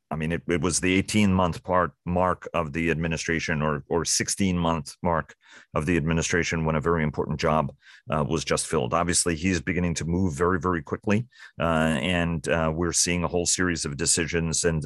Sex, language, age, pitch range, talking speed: male, English, 40-59, 80-95 Hz, 190 wpm